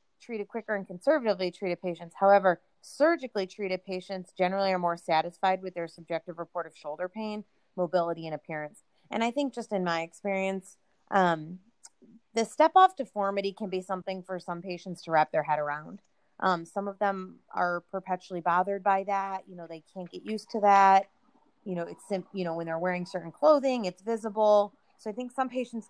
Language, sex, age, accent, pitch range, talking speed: English, female, 30-49, American, 170-200 Hz, 190 wpm